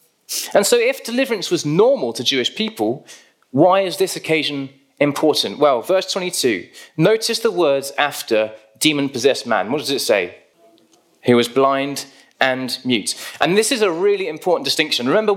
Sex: male